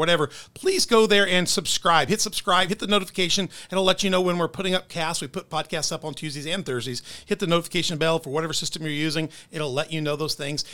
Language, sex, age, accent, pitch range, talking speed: English, male, 40-59, American, 150-185 Hz, 245 wpm